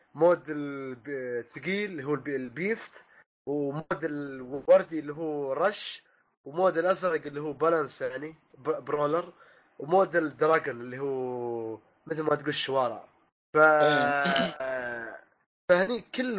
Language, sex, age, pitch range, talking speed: Arabic, male, 20-39, 145-185 Hz, 105 wpm